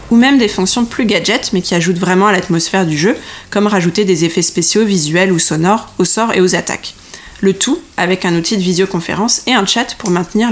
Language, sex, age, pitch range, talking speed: French, female, 20-39, 185-235 Hz, 220 wpm